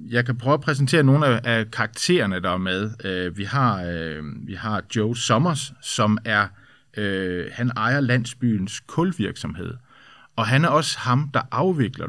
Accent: native